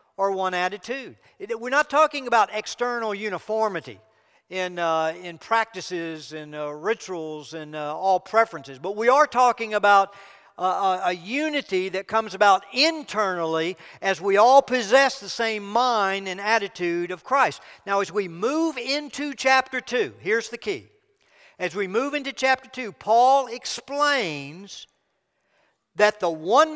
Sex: male